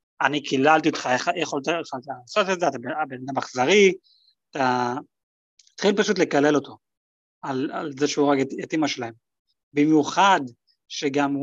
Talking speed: 145 wpm